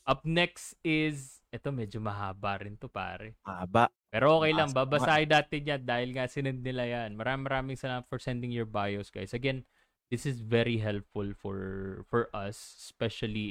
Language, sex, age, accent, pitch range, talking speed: Filipino, male, 20-39, native, 105-130 Hz, 180 wpm